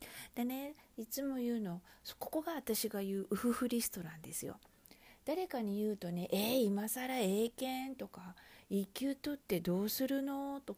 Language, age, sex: Japanese, 40-59, female